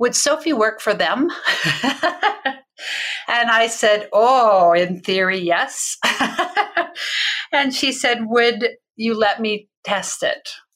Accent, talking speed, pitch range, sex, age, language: American, 115 wpm, 180-225 Hz, female, 50-69, English